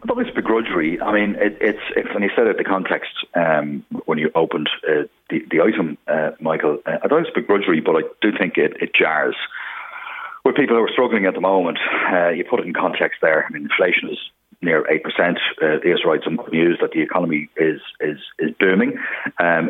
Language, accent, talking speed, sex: English, Irish, 230 wpm, male